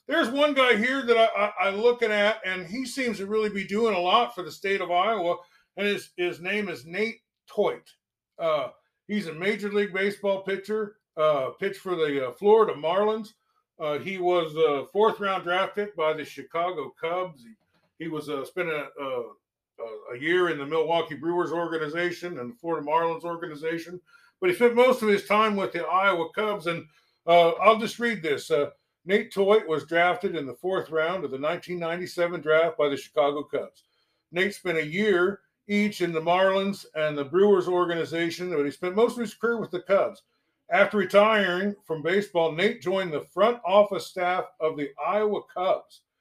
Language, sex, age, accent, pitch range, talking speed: English, male, 50-69, American, 165-210 Hz, 190 wpm